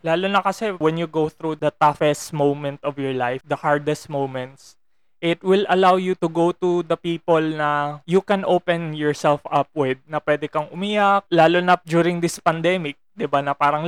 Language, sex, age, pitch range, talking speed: Filipino, male, 20-39, 145-180 Hz, 195 wpm